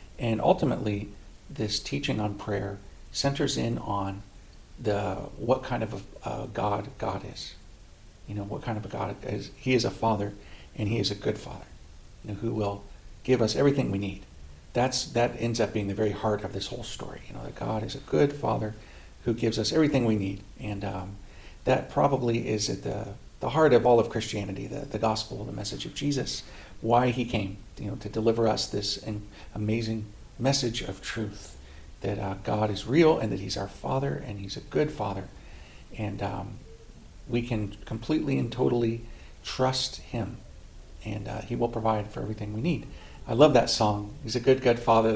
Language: English